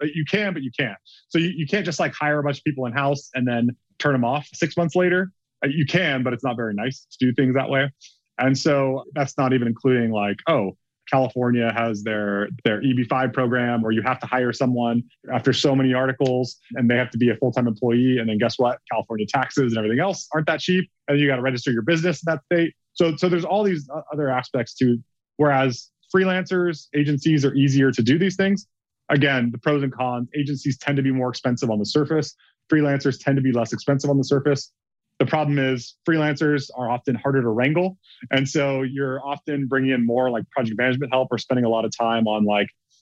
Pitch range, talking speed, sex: 120-150 Hz, 220 wpm, male